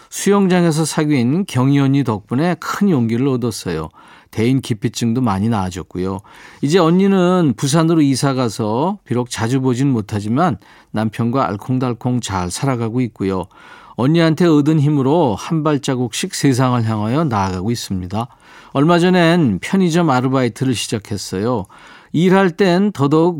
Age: 40-59